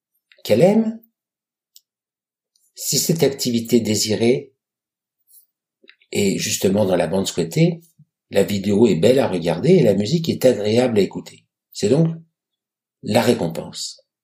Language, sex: French, male